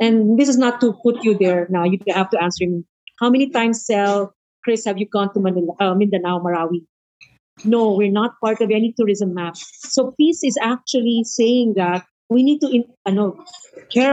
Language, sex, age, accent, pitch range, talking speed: English, female, 50-69, Filipino, 195-235 Hz, 185 wpm